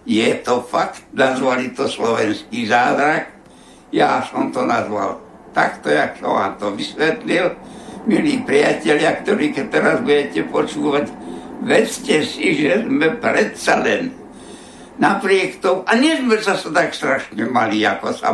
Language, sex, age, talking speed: Slovak, male, 60-79, 135 wpm